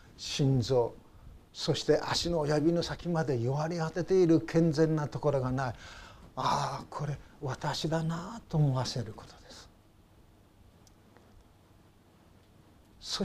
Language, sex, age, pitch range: Japanese, male, 60-79, 115-175 Hz